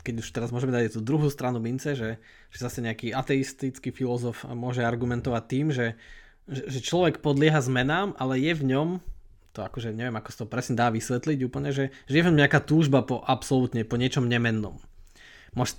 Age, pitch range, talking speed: 20-39, 120-145 Hz, 185 wpm